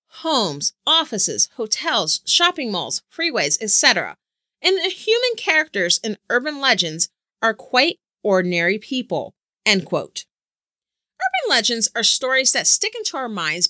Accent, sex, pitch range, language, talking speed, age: American, female, 215-320 Hz, English, 125 wpm, 30-49